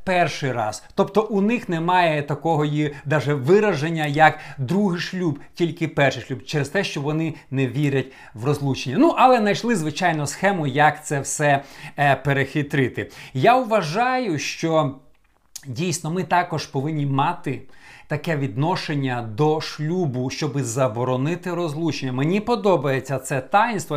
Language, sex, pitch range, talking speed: Ukrainian, male, 135-175 Hz, 130 wpm